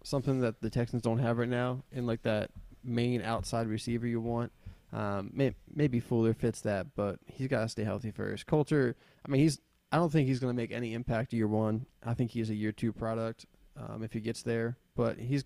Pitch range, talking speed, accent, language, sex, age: 110-130 Hz, 230 wpm, American, English, male, 20-39